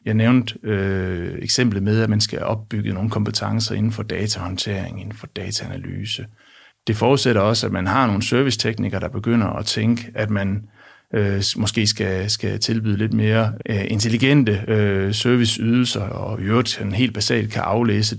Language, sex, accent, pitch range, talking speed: Danish, male, native, 105-120 Hz, 160 wpm